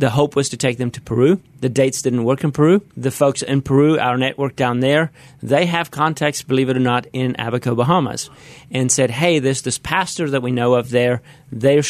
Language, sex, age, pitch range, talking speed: English, male, 30-49, 125-145 Hz, 220 wpm